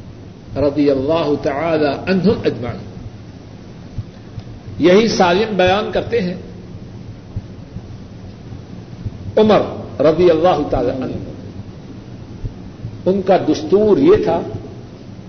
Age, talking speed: 60-79, 80 wpm